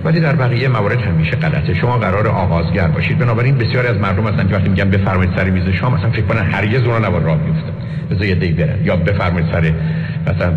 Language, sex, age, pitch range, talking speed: Persian, male, 50-69, 100-145 Hz, 210 wpm